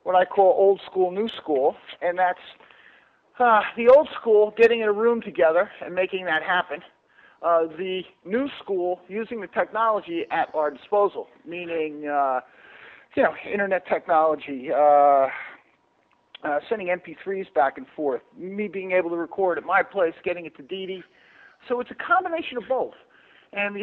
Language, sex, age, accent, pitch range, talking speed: English, male, 50-69, American, 155-210 Hz, 165 wpm